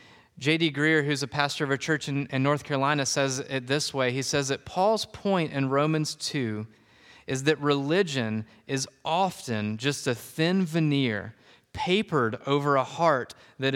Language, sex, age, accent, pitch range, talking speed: English, male, 30-49, American, 125-165 Hz, 160 wpm